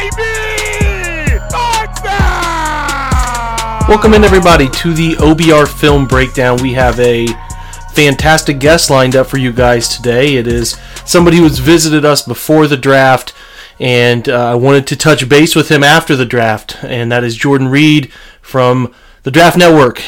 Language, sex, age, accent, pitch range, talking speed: English, male, 30-49, American, 125-160 Hz, 150 wpm